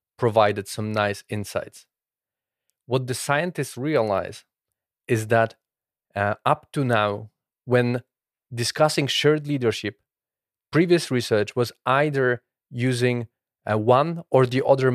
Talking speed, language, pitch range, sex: 110 wpm, English, 120-140 Hz, male